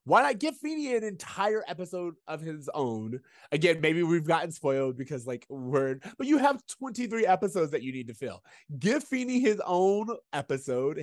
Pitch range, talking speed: 135-195 Hz, 180 wpm